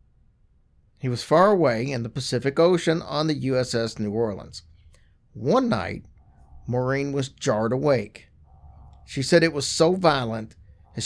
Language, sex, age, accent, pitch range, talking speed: English, male, 50-69, American, 110-140 Hz, 140 wpm